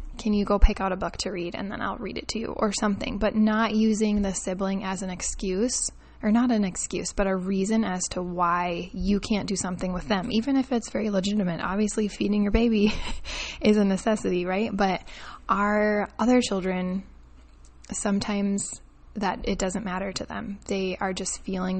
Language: English